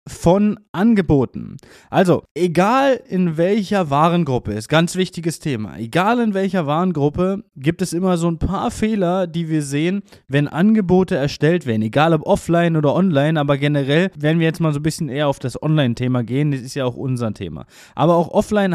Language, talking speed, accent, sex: German, 180 wpm, German, male